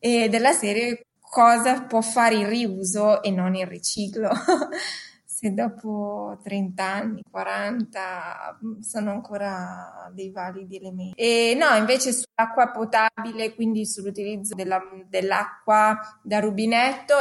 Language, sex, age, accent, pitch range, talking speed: Italian, female, 20-39, native, 195-225 Hz, 115 wpm